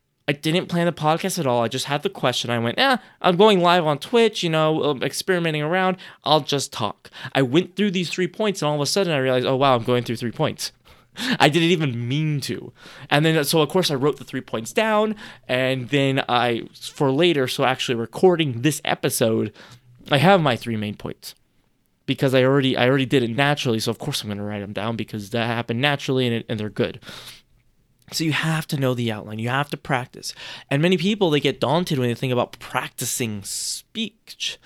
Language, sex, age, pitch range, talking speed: English, male, 20-39, 125-175 Hz, 220 wpm